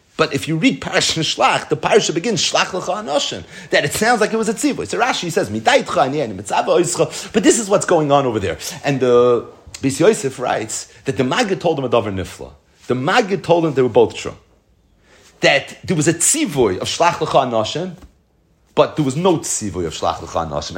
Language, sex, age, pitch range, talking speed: English, male, 30-49, 105-160 Hz, 200 wpm